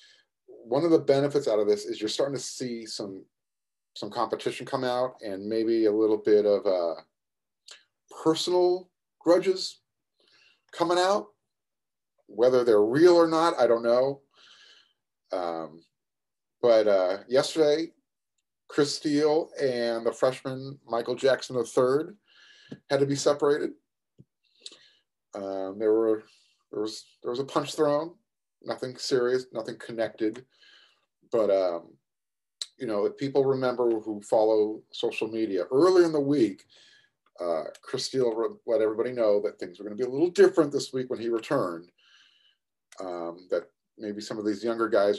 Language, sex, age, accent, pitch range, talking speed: English, male, 30-49, American, 110-175 Hz, 145 wpm